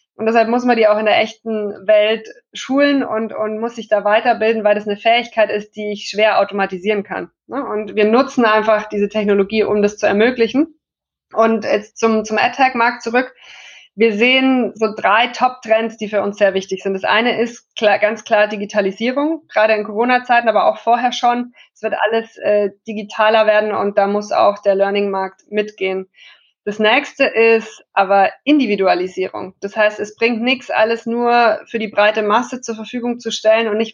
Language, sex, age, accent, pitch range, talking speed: German, female, 20-39, German, 205-240 Hz, 185 wpm